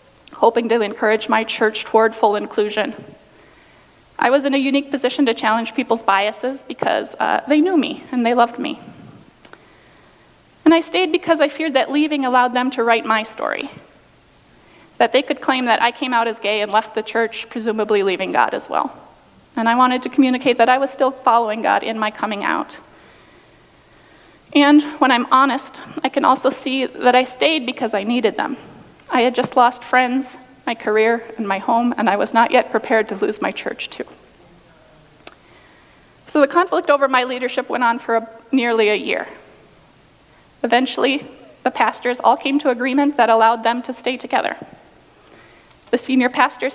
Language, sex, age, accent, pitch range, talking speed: English, female, 30-49, American, 225-265 Hz, 180 wpm